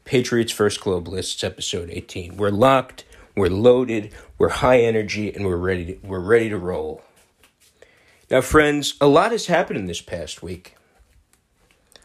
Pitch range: 90-130 Hz